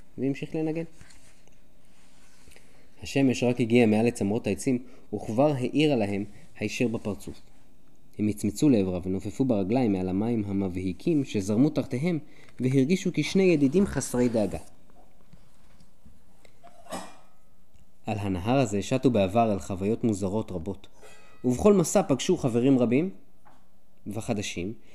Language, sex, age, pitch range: Hebrew, male, 20-39, 105-160 Hz